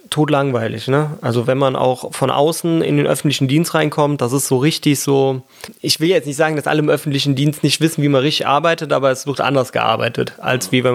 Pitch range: 135-165 Hz